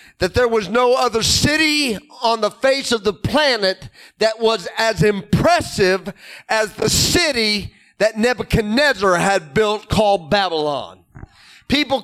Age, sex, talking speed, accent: 40-59, male, 130 wpm, American